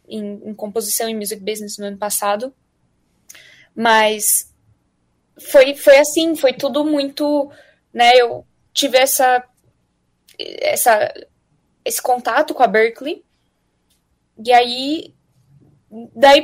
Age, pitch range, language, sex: 10-29, 230-290 Hz, Portuguese, female